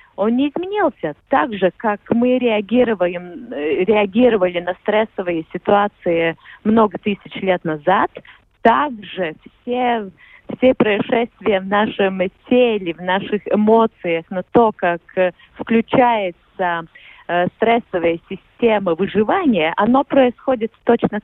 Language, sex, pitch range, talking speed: Russian, female, 185-245 Hz, 105 wpm